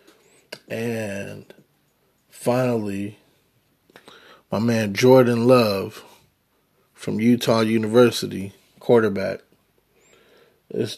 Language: English